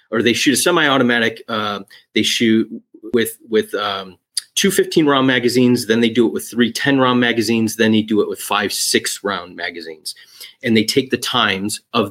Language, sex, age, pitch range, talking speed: English, male, 30-49, 110-130 Hz, 180 wpm